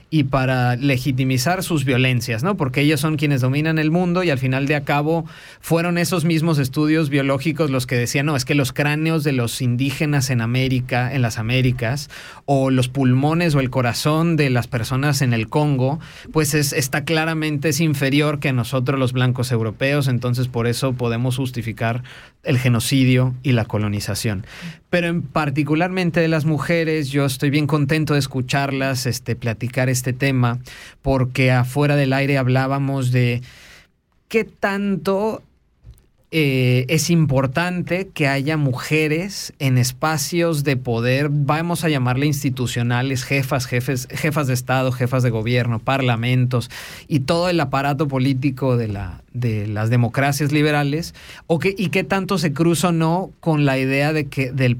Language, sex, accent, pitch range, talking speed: German, male, Mexican, 125-155 Hz, 160 wpm